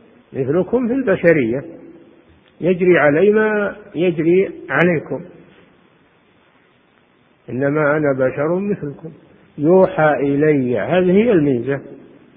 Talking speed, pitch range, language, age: 80 wpm, 135-165 Hz, Arabic, 50-69